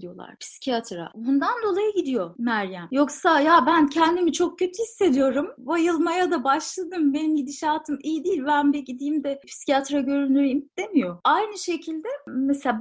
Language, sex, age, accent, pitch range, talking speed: Turkish, female, 30-49, native, 260-335 Hz, 140 wpm